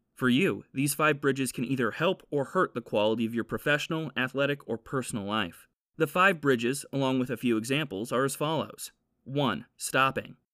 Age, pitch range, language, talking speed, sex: 30-49, 125-155 Hz, English, 180 wpm, male